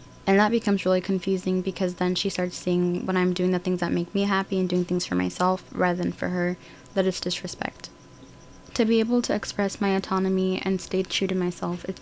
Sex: female